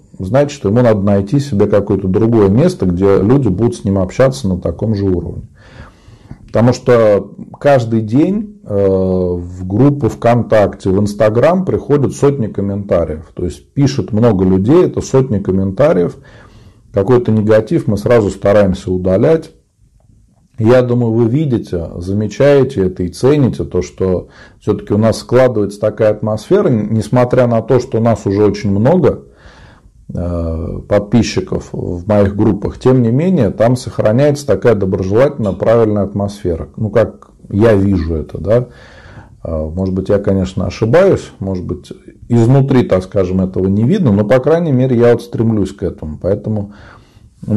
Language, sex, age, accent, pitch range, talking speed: Russian, male, 40-59, native, 95-120 Hz, 140 wpm